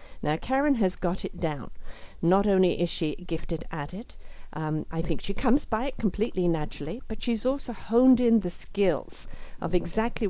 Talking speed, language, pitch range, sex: 180 wpm, English, 170-230 Hz, female